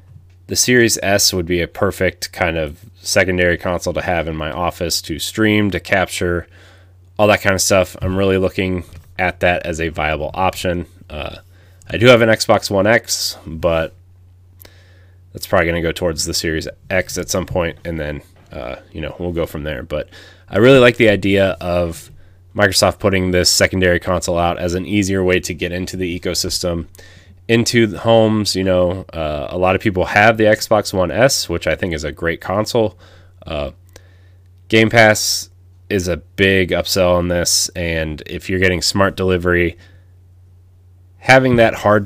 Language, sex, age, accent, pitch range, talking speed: English, male, 30-49, American, 90-95 Hz, 180 wpm